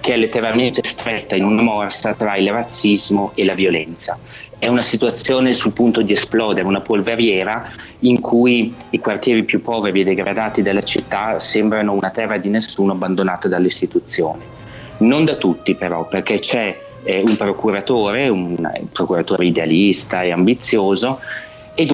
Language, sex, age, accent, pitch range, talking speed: Italian, male, 30-49, native, 95-115 Hz, 145 wpm